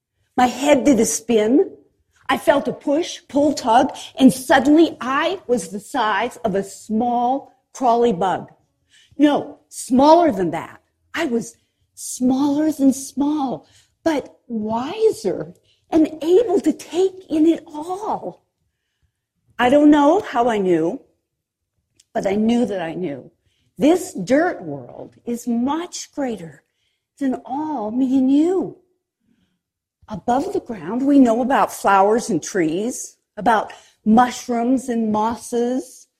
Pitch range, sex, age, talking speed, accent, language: 225-310 Hz, female, 50-69, 125 wpm, American, English